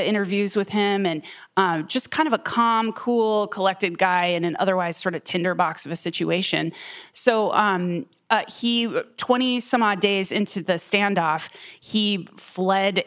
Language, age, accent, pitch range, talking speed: English, 30-49, American, 175-205 Hz, 160 wpm